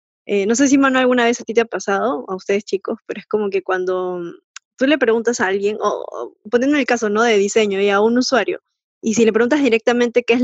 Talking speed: 255 wpm